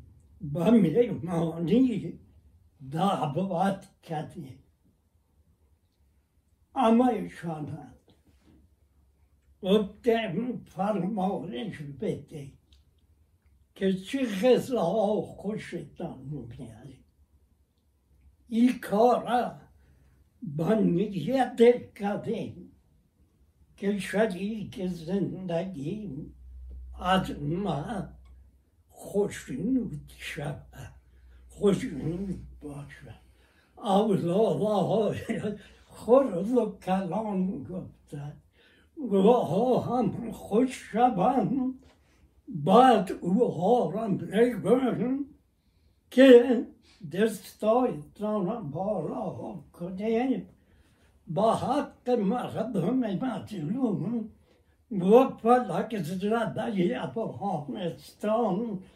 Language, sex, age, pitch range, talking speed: Persian, male, 60-79, 145-225 Hz, 45 wpm